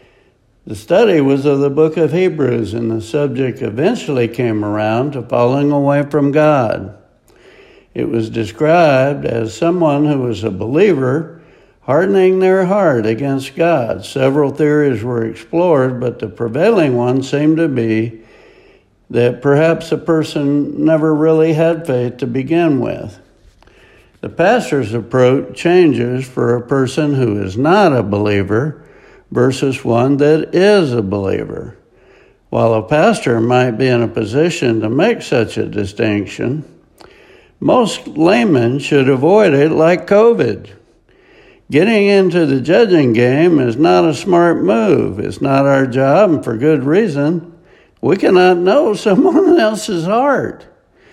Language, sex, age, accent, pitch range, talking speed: English, male, 60-79, American, 120-165 Hz, 135 wpm